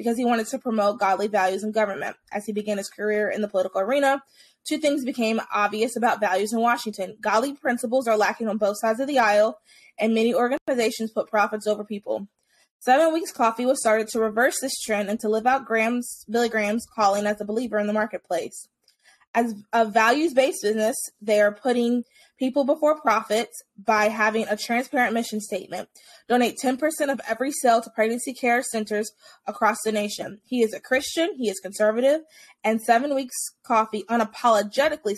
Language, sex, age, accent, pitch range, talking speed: English, female, 20-39, American, 215-270 Hz, 180 wpm